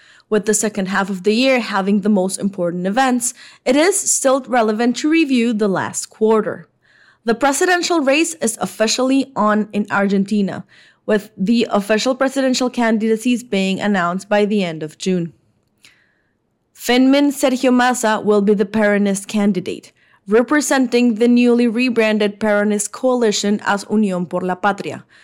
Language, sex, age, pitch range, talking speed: English, female, 20-39, 200-245 Hz, 145 wpm